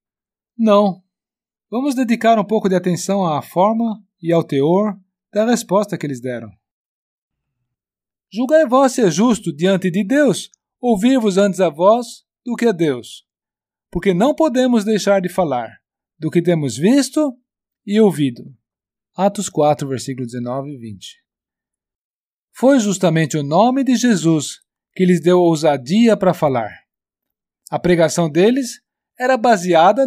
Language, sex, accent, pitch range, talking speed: Portuguese, male, Brazilian, 155-220 Hz, 135 wpm